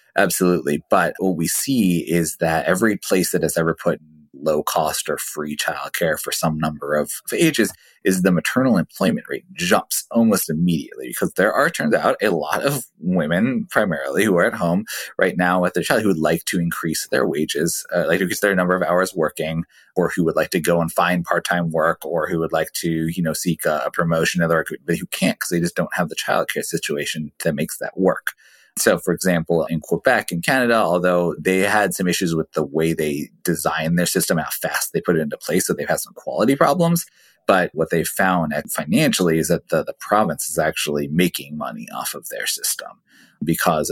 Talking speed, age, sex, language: 215 wpm, 30-49, male, English